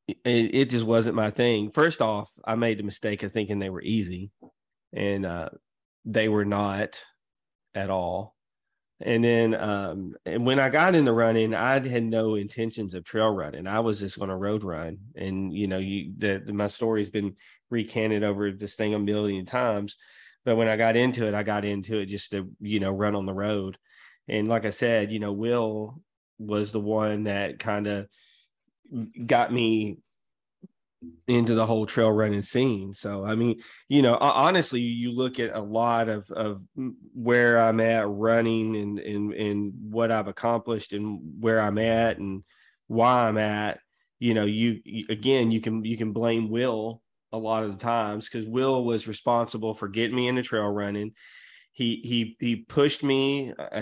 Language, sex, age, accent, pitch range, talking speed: English, male, 20-39, American, 105-115 Hz, 185 wpm